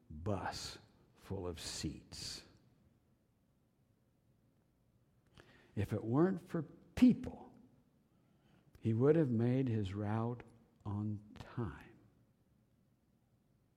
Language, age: English, 60-79